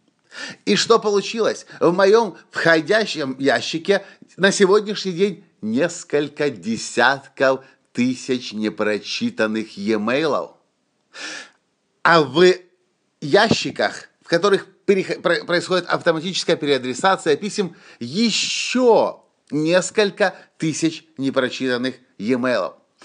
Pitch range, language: 140-195 Hz, Russian